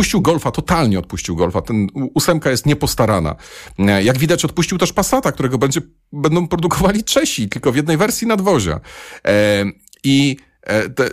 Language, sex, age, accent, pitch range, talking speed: Polish, male, 40-59, native, 105-150 Hz, 140 wpm